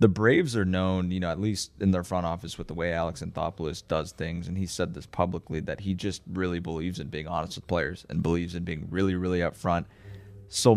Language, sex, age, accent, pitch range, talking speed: English, male, 30-49, American, 90-105 Hz, 235 wpm